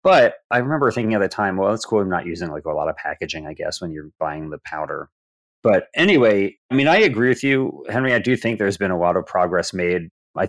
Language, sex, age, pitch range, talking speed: English, male, 30-49, 80-110 Hz, 255 wpm